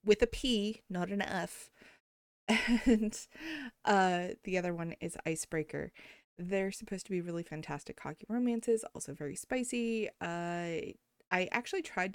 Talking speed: 135 wpm